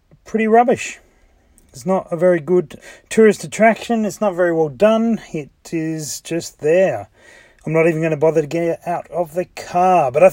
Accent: Australian